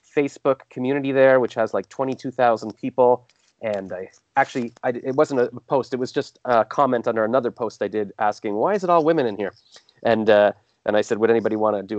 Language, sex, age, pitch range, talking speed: English, male, 30-49, 110-140 Hz, 225 wpm